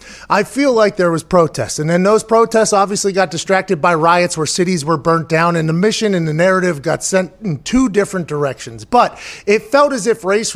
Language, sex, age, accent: English, male, 30-49, American